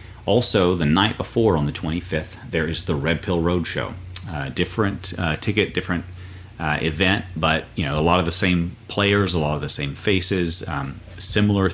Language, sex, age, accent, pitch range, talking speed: English, male, 30-49, American, 80-95 Hz, 190 wpm